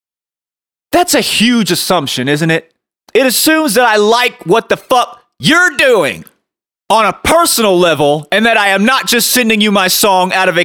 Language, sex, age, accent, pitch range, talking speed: English, male, 30-49, American, 225-325 Hz, 185 wpm